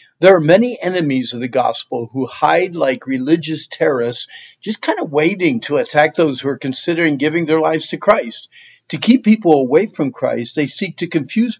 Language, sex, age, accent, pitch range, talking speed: English, male, 50-69, American, 135-170 Hz, 190 wpm